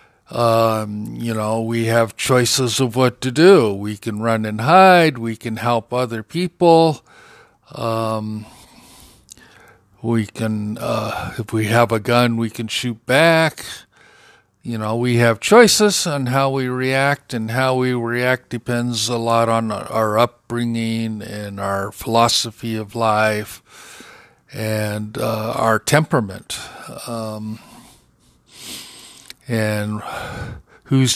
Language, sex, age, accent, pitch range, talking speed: English, male, 50-69, American, 110-130 Hz, 125 wpm